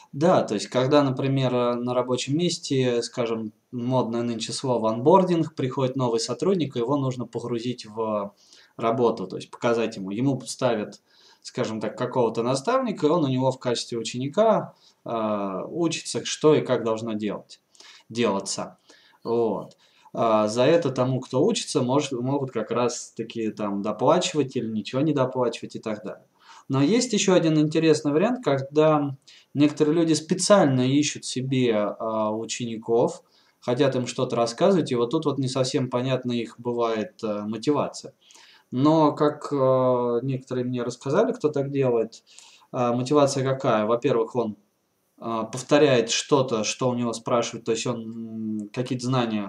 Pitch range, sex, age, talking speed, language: 115-140 Hz, male, 20-39, 140 wpm, Russian